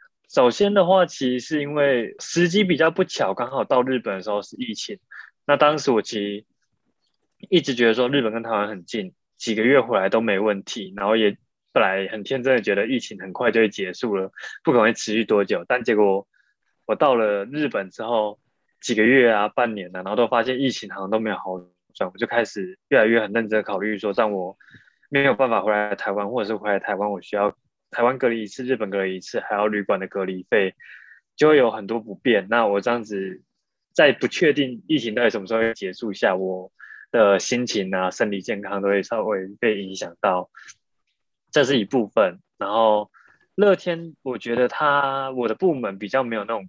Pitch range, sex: 100-135 Hz, male